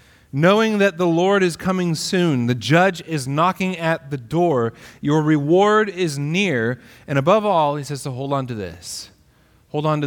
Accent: American